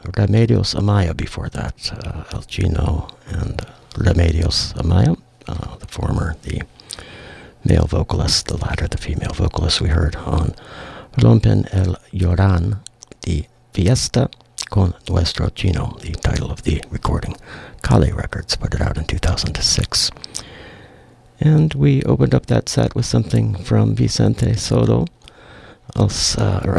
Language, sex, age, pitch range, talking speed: English, male, 60-79, 85-115 Hz, 125 wpm